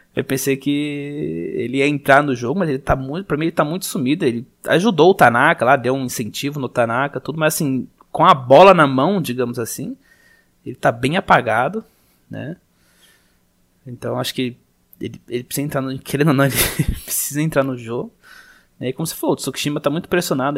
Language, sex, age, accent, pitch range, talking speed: Portuguese, male, 20-39, Brazilian, 125-170 Hz, 195 wpm